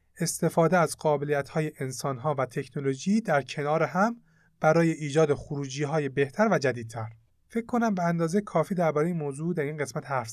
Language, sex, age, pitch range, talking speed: Persian, male, 30-49, 135-180 Hz, 175 wpm